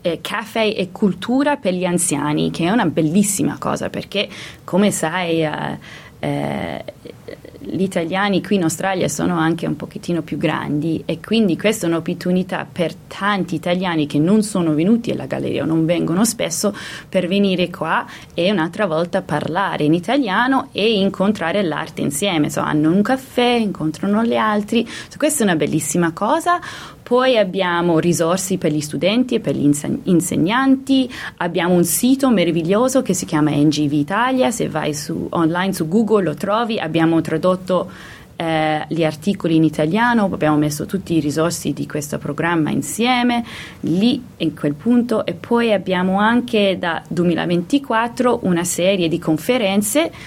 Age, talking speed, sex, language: 20-39, 150 wpm, female, Italian